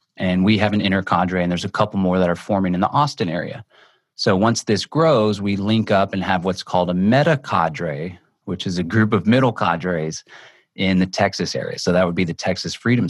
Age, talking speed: 30-49, 225 wpm